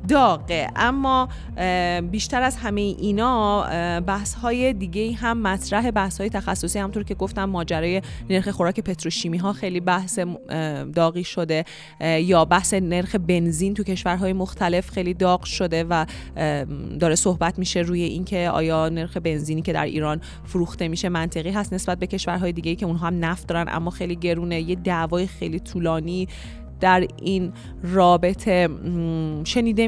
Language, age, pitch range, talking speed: Persian, 30-49, 170-210 Hz, 150 wpm